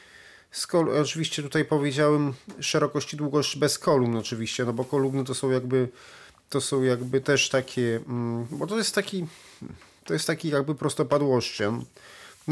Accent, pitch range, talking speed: native, 125-145 Hz, 150 wpm